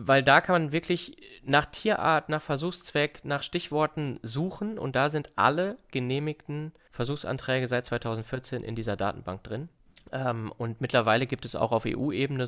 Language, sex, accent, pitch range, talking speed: German, male, German, 110-130 Hz, 155 wpm